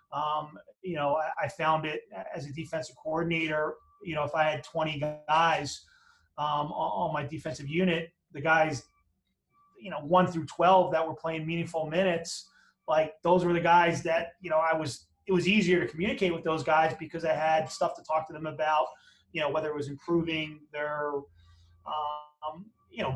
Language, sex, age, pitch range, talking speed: English, male, 30-49, 155-175 Hz, 185 wpm